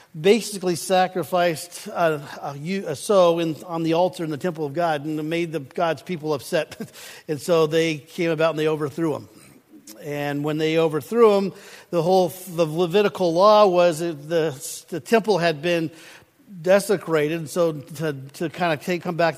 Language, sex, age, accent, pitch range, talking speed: English, male, 50-69, American, 155-180 Hz, 180 wpm